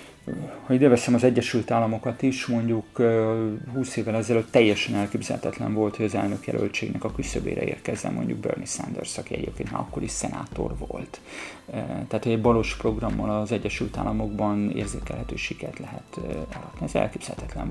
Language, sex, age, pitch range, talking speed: Hungarian, male, 30-49, 105-120 Hz, 140 wpm